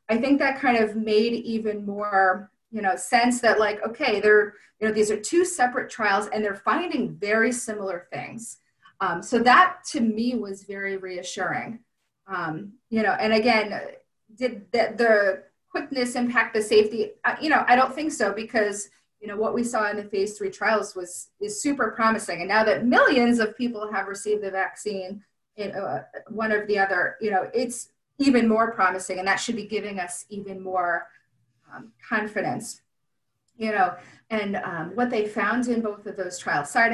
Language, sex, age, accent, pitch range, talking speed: English, female, 30-49, American, 190-230 Hz, 185 wpm